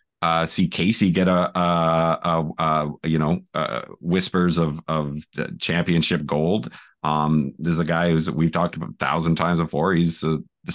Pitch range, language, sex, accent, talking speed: 80-105 Hz, English, male, American, 175 wpm